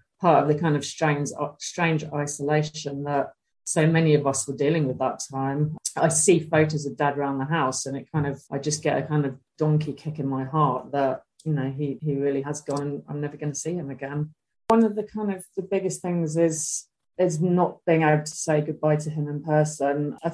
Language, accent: English, British